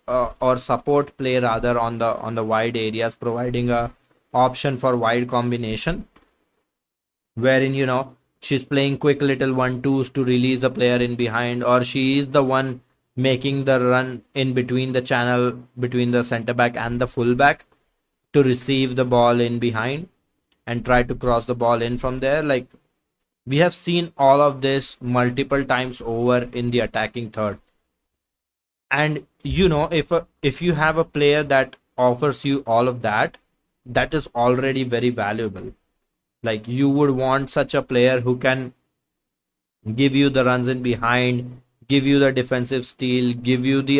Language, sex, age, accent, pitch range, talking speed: English, male, 20-39, Indian, 120-140 Hz, 170 wpm